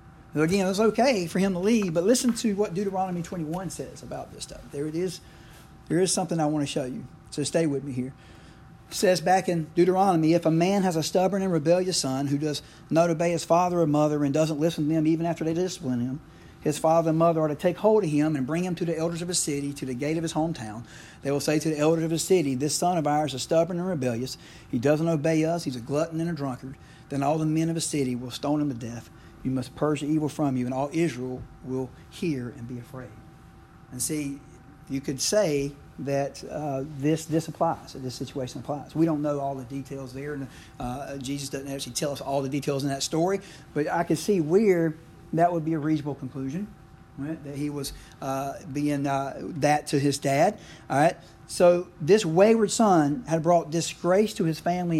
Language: English